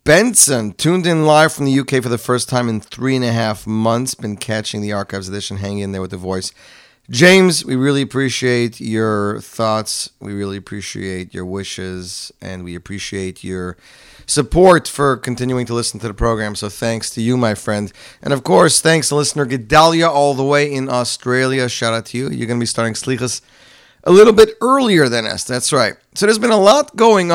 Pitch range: 105-135 Hz